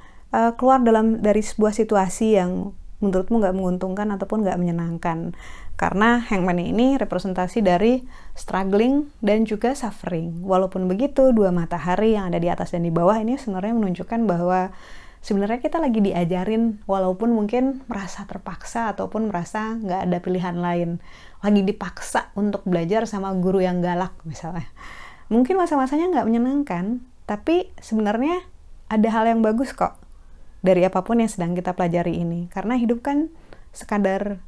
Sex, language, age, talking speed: female, Indonesian, 20-39, 140 wpm